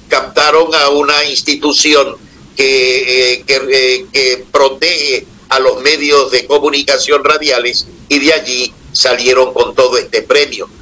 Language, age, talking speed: Spanish, 60-79, 120 wpm